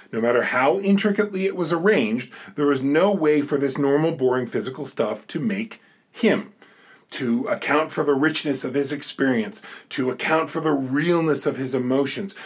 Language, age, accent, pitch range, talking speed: English, 40-59, American, 125-170 Hz, 175 wpm